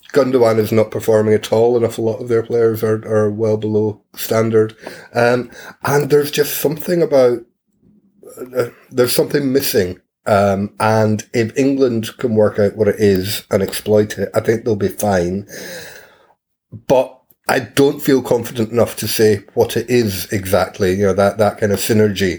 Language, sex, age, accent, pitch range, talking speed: English, male, 30-49, British, 95-115 Hz, 170 wpm